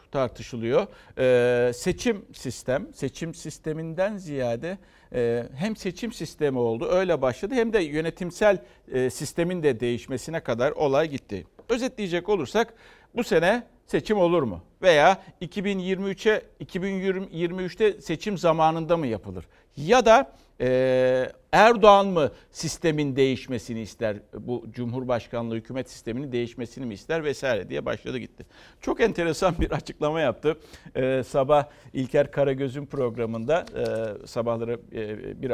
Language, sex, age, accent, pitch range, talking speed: Turkish, male, 60-79, native, 120-175 Hz, 120 wpm